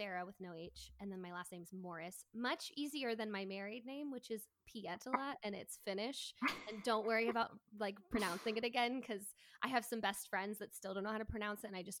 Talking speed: 240 wpm